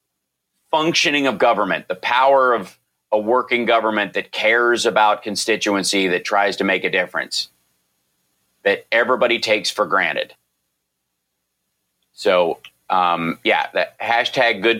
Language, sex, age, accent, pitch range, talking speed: English, male, 30-49, American, 90-120 Hz, 120 wpm